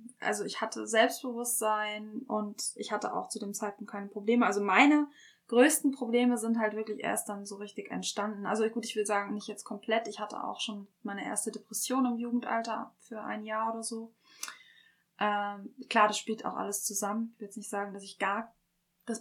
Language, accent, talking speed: German, German, 195 wpm